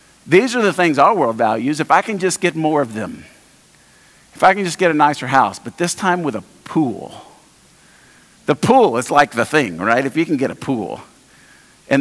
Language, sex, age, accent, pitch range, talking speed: English, male, 50-69, American, 165-230 Hz, 215 wpm